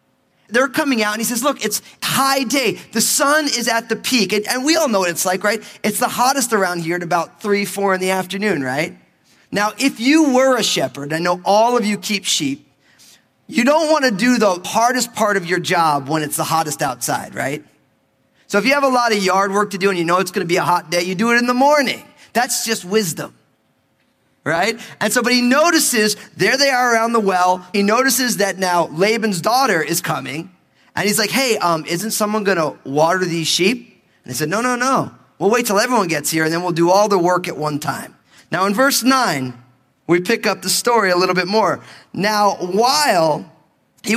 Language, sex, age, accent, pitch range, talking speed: English, male, 30-49, American, 165-235 Hz, 230 wpm